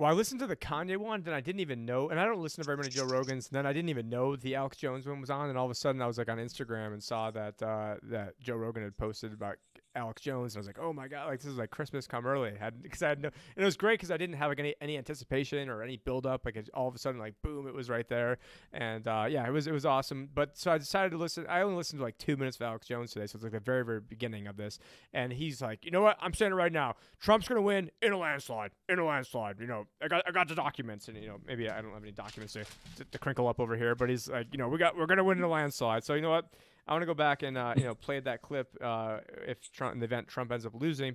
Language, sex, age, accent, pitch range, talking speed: English, male, 30-49, American, 115-155 Hz, 320 wpm